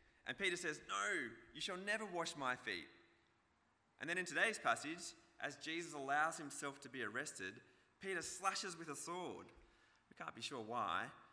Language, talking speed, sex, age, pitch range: English, 170 wpm, male, 20-39, 120-155 Hz